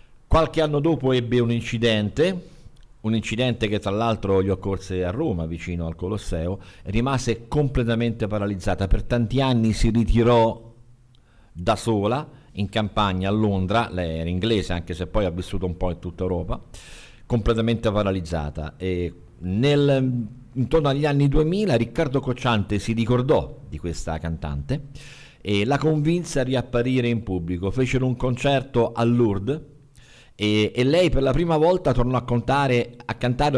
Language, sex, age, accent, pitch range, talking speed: Italian, male, 50-69, native, 95-125 Hz, 150 wpm